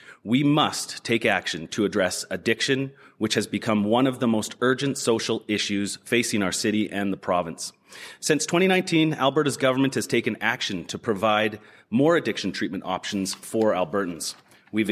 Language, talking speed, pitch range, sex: English, 155 wpm, 105-135 Hz, male